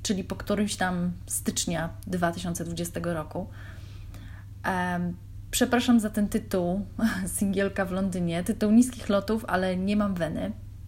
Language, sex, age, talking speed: Polish, female, 20-39, 120 wpm